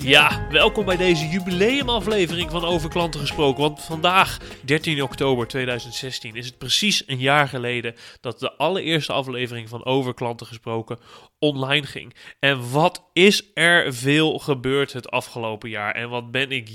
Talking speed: 155 wpm